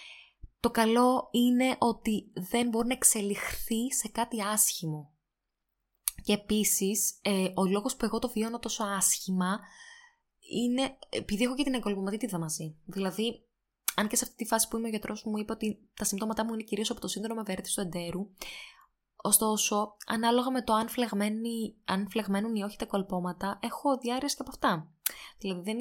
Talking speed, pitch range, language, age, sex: 170 wpm, 185-235 Hz, Greek, 20-39, female